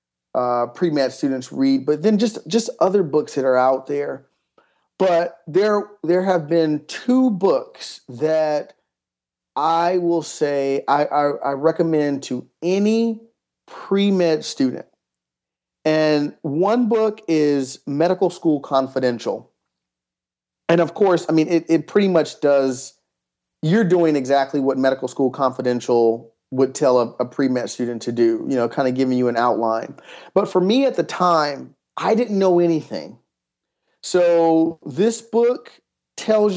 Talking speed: 145 wpm